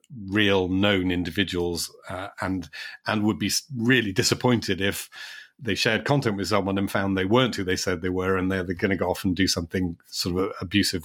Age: 40-59